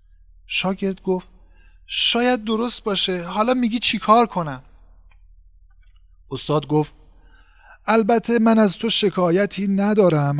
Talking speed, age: 105 wpm, 50-69